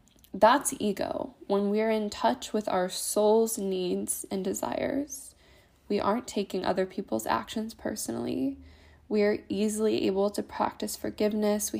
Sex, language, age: female, English, 10-29